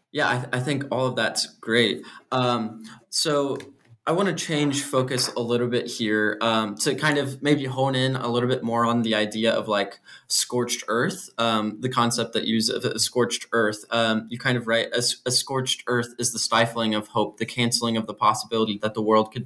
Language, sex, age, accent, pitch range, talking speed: English, male, 20-39, American, 110-125 Hz, 215 wpm